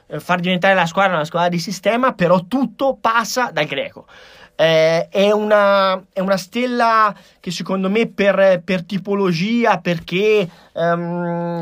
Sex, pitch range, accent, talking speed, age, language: male, 175-205 Hz, native, 140 wpm, 30-49, Italian